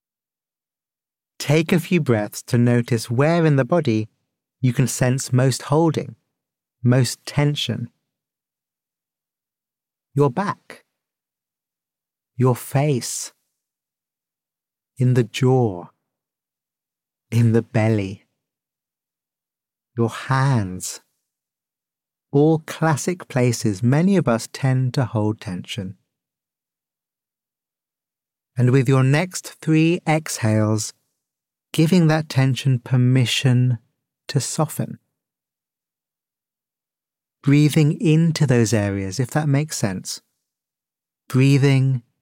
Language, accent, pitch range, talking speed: English, British, 115-145 Hz, 85 wpm